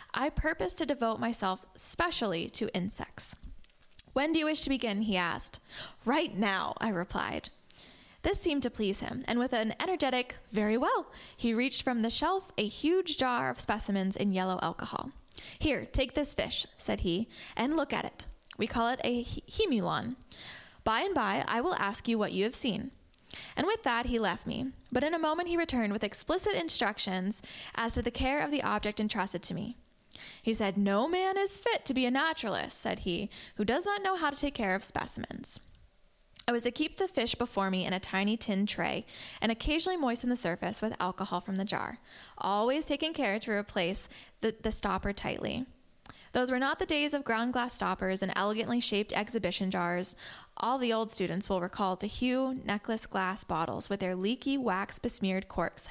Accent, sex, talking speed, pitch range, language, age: American, female, 195 wpm, 195-265 Hz, English, 10-29